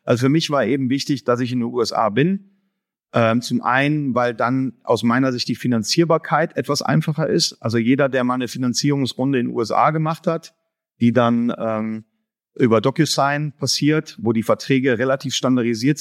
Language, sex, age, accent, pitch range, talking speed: German, male, 40-59, German, 120-145 Hz, 175 wpm